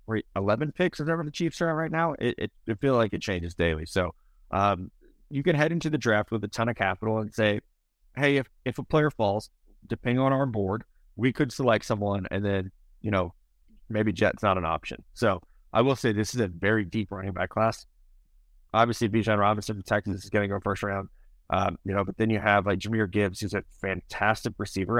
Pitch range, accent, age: 100-130 Hz, American, 30-49